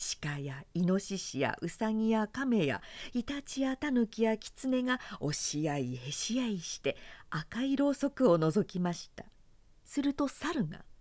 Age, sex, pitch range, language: 50-69, female, 165-270 Hz, Japanese